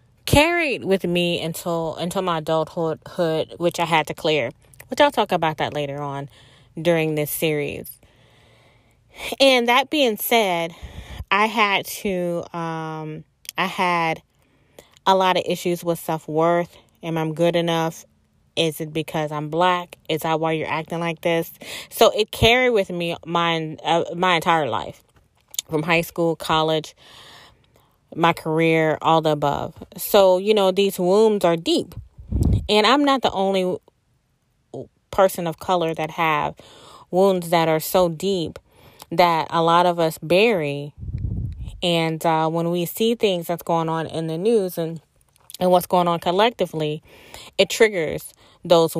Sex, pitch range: female, 160-180 Hz